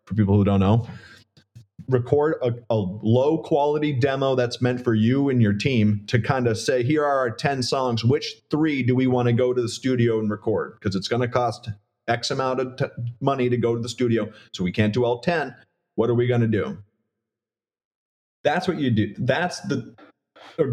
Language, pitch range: English, 110-130 Hz